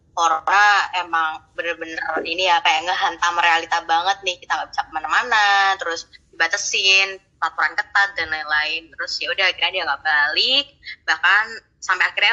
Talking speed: 145 wpm